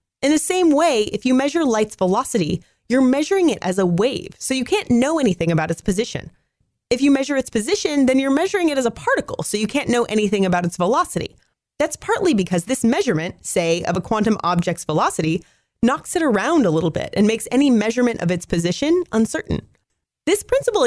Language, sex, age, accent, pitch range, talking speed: English, female, 30-49, American, 185-270 Hz, 200 wpm